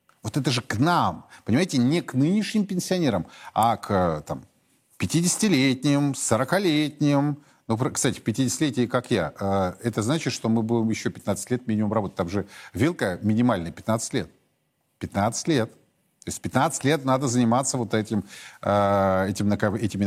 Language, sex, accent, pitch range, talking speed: Russian, male, native, 100-145 Hz, 140 wpm